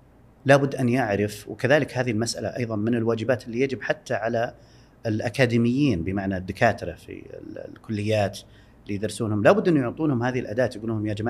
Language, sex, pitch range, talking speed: Arabic, male, 100-125 Hz, 150 wpm